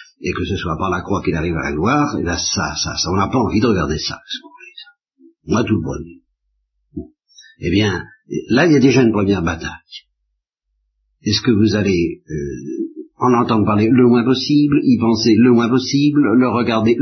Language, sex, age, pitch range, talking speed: French, male, 60-79, 90-130 Hz, 205 wpm